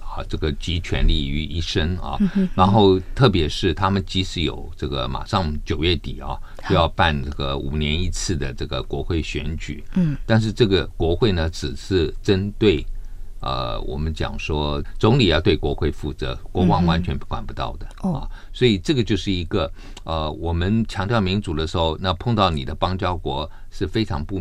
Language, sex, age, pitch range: Chinese, male, 50-69, 75-105 Hz